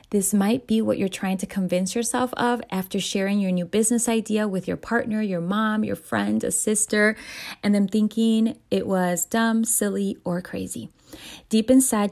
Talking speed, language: 180 wpm, English